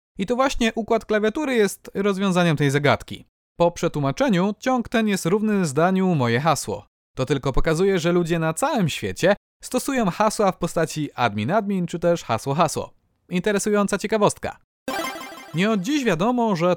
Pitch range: 160-225 Hz